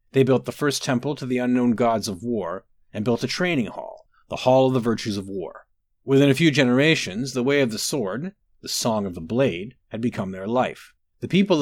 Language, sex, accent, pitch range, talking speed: English, male, American, 115-145 Hz, 220 wpm